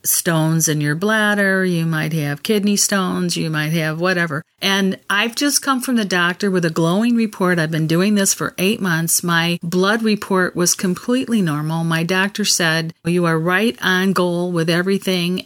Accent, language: American, English